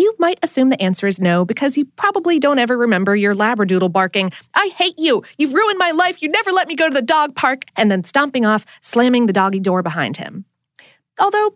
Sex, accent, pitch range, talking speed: female, American, 195-330 Hz, 225 wpm